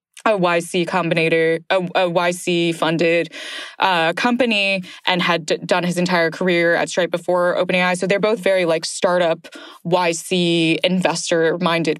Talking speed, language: 135 wpm, English